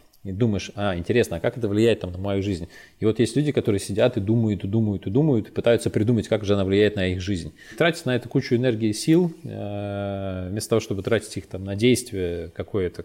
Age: 20-39